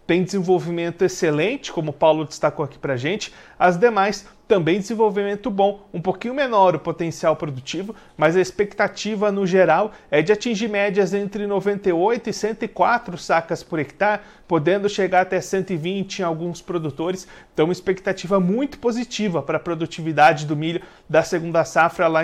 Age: 40-59